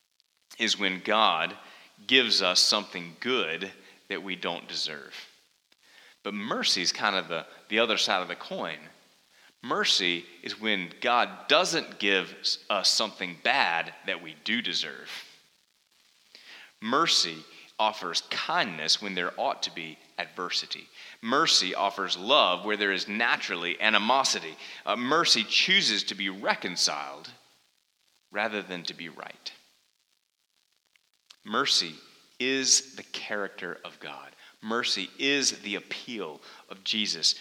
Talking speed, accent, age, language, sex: 120 wpm, American, 30-49, English, male